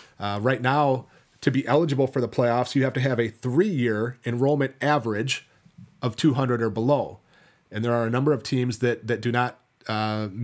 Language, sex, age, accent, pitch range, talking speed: English, male, 30-49, American, 115-135 Hz, 190 wpm